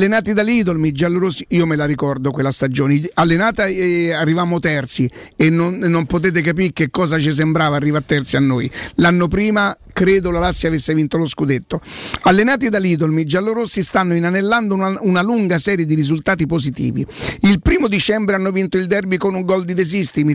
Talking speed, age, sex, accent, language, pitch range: 175 wpm, 50-69, male, native, Italian, 160-200 Hz